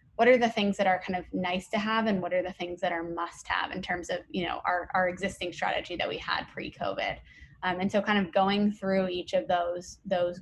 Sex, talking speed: female, 260 wpm